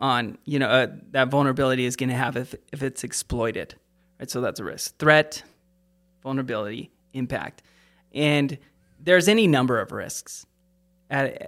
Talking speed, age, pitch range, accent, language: 150 wpm, 20-39, 120-140 Hz, American, English